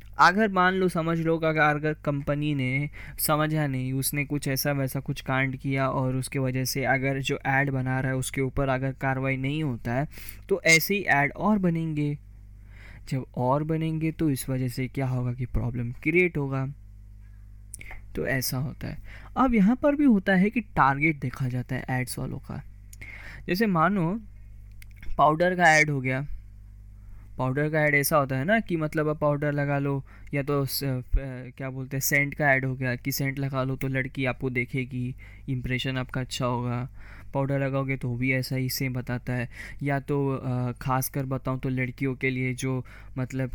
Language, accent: Hindi, native